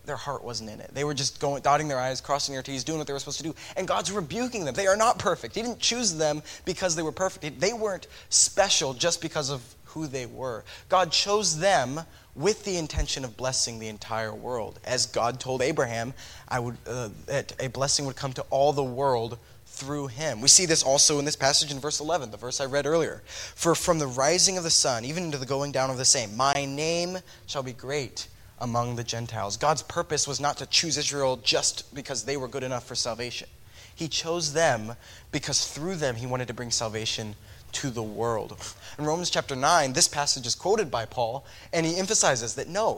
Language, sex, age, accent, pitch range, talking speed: English, male, 20-39, American, 125-160 Hz, 220 wpm